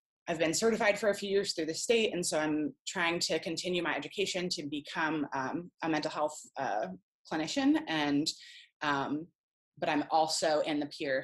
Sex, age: female, 20-39